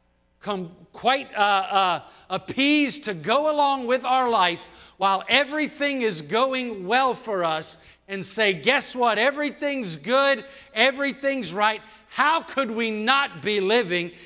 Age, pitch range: 50-69, 200-280 Hz